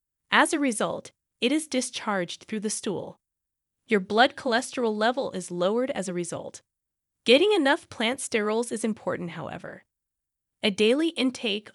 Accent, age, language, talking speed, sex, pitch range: American, 20-39, English, 145 wpm, female, 185-260 Hz